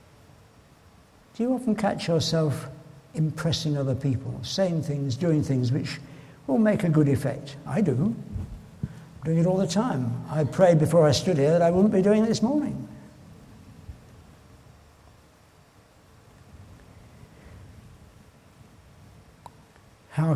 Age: 60-79